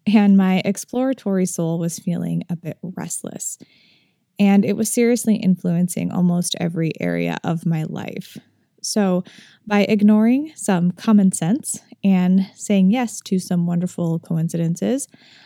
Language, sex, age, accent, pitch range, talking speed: English, female, 10-29, American, 175-210 Hz, 130 wpm